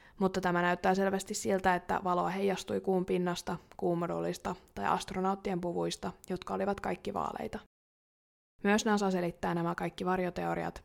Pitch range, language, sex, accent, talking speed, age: 170-200 Hz, Finnish, female, native, 125 wpm, 20-39